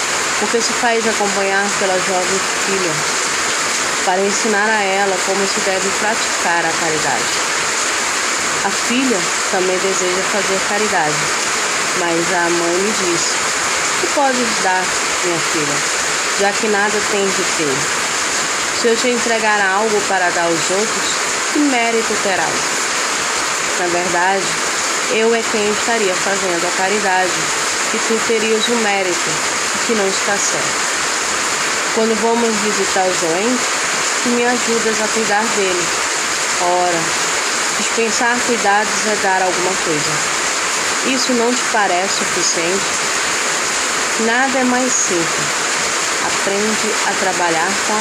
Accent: Brazilian